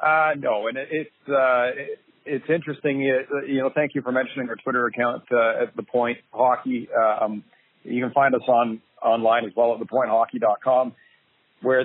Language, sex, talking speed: English, male, 180 wpm